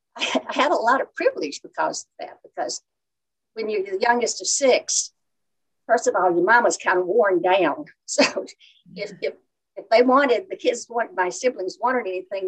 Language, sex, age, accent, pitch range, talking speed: English, female, 60-79, American, 185-305 Hz, 180 wpm